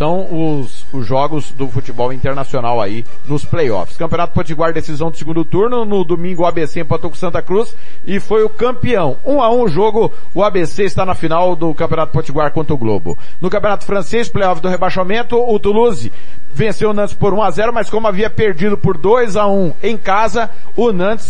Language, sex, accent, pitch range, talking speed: Portuguese, male, Brazilian, 165-215 Hz, 195 wpm